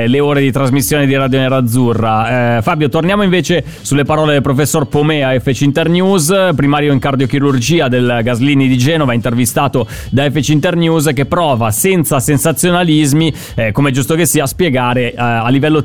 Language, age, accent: Italian, 30-49, native